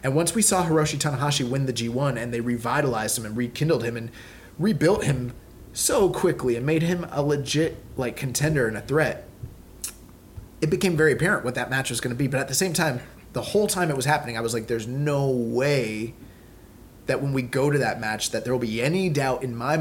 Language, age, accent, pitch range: English, 20-39, American, 115-145 Hz